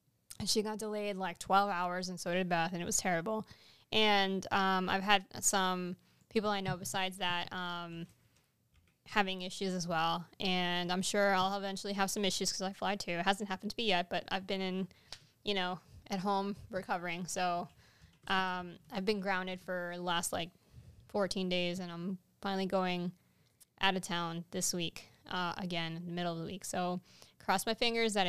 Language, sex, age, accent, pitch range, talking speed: English, female, 10-29, American, 185-210 Hz, 185 wpm